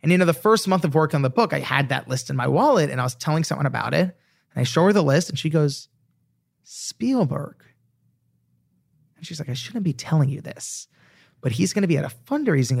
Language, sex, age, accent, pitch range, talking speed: English, male, 30-49, American, 130-160 Hz, 245 wpm